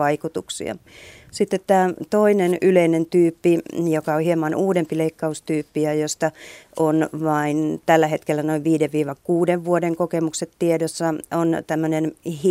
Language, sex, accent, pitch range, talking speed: Finnish, female, native, 150-170 Hz, 115 wpm